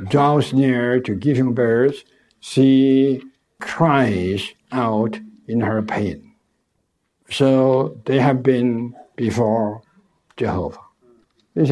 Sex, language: male, English